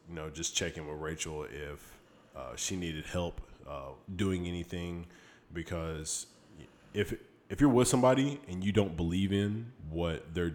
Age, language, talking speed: 20-39, English, 155 wpm